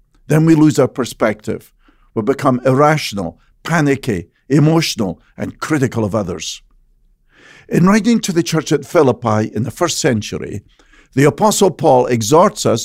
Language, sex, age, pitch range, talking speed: English, male, 50-69, 115-165 Hz, 140 wpm